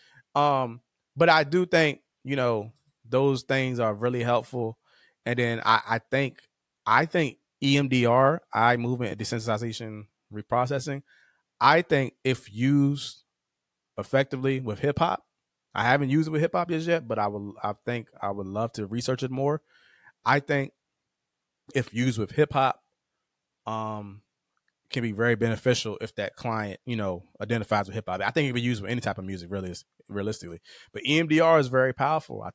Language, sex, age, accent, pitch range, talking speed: English, male, 20-39, American, 105-135 Hz, 160 wpm